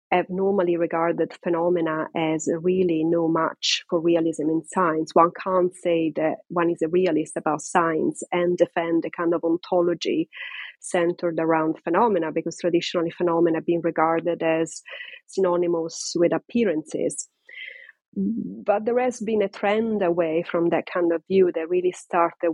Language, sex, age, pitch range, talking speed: English, female, 30-49, 170-195 Hz, 150 wpm